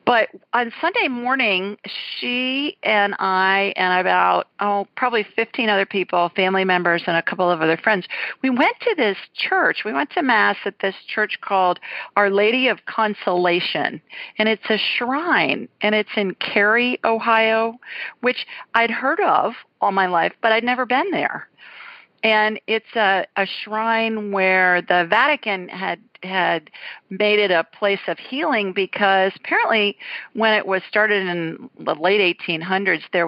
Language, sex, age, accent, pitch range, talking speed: English, female, 50-69, American, 185-230 Hz, 155 wpm